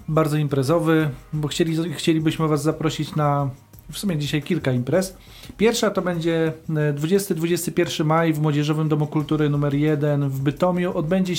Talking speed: 140 wpm